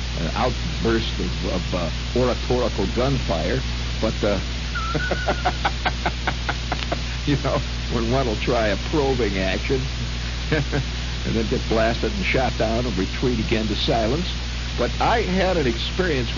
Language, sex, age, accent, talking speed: English, male, 60-79, American, 130 wpm